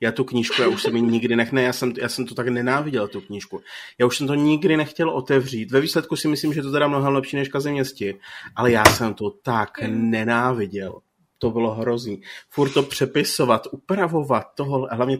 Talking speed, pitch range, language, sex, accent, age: 200 wpm, 120-155 Hz, Czech, male, native, 30-49